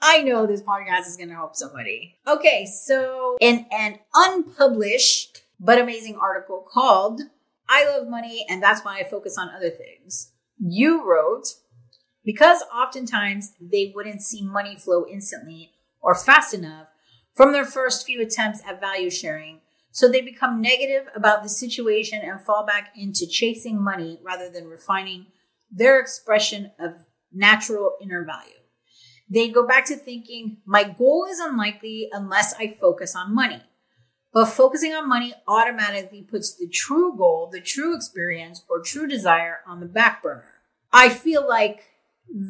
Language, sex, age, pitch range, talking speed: English, female, 30-49, 185-260 Hz, 155 wpm